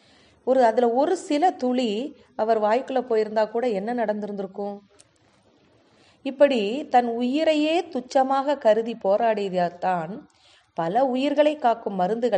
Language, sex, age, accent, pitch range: Tamil, female, 30-49, native, 195-250 Hz